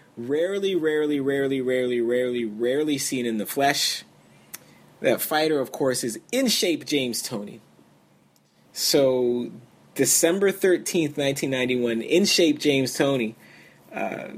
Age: 20-39